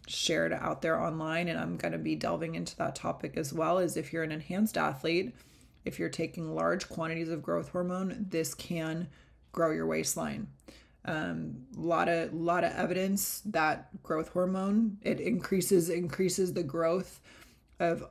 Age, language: 20-39, English